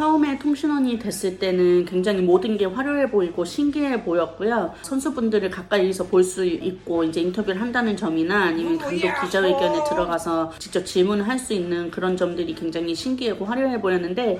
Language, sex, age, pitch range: Korean, female, 30-49, 175-220 Hz